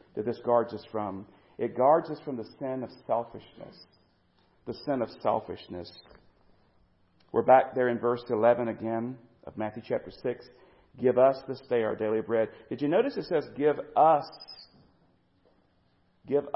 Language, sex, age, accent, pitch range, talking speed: English, male, 40-59, American, 95-135 Hz, 155 wpm